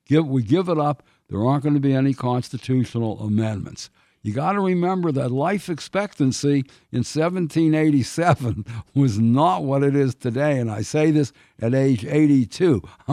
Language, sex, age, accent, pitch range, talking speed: English, male, 60-79, American, 125-160 Hz, 160 wpm